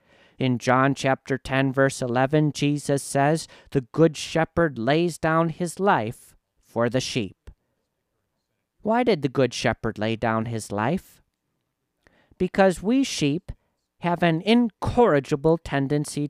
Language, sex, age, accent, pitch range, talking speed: English, male, 40-59, American, 120-165 Hz, 125 wpm